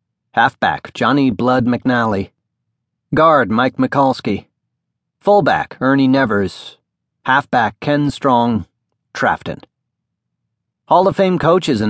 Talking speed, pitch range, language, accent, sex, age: 95 wpm, 105-145 Hz, English, American, male, 40-59